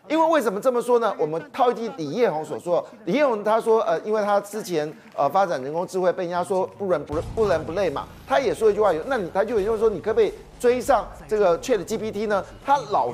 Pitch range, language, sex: 175-240 Hz, Chinese, male